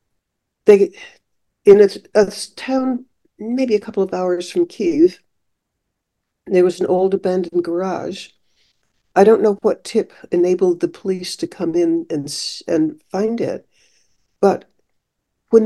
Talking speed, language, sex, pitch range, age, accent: 135 wpm, English, female, 180-260 Hz, 60-79, American